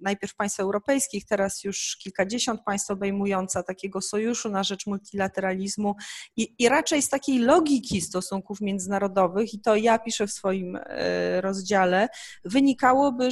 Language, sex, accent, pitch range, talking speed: Polish, female, native, 195-240 Hz, 130 wpm